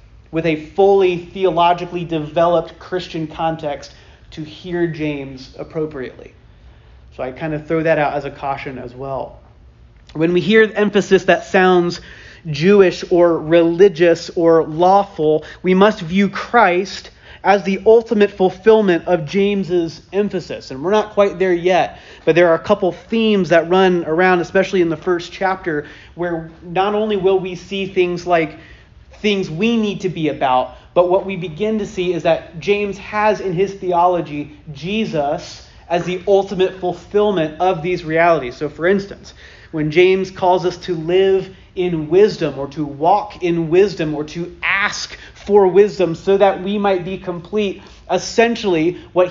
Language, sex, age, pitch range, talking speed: English, male, 30-49, 165-195 Hz, 160 wpm